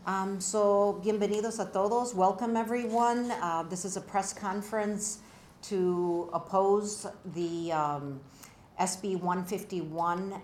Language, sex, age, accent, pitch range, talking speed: English, female, 50-69, American, 160-200 Hz, 110 wpm